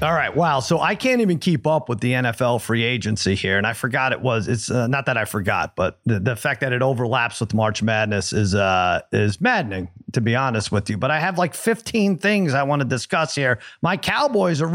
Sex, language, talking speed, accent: male, English, 240 wpm, American